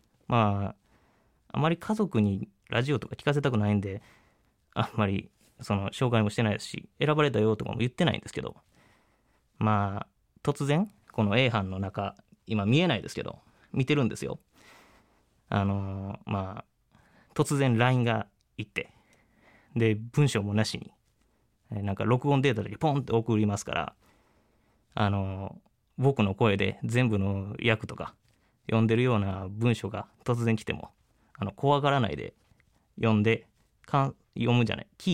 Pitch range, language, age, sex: 105-140 Hz, Japanese, 20-39, male